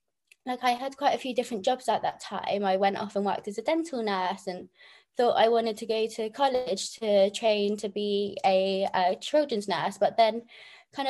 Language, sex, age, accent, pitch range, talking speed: English, female, 20-39, British, 205-245 Hz, 210 wpm